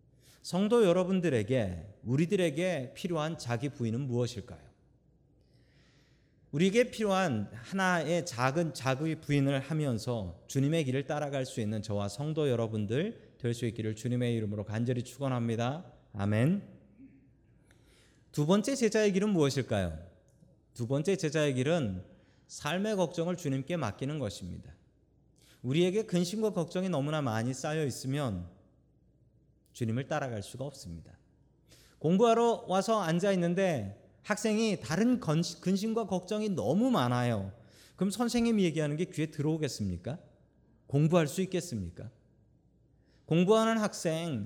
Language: Korean